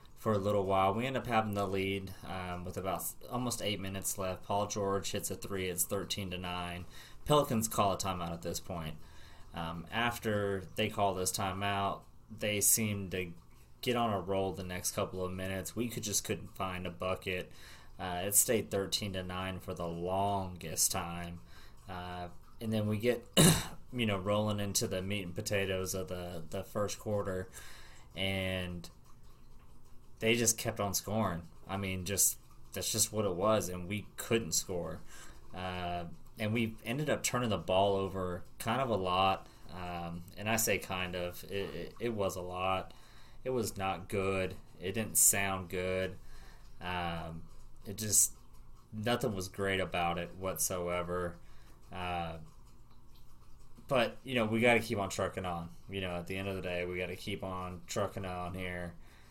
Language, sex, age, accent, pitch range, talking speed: English, male, 20-39, American, 90-105 Hz, 175 wpm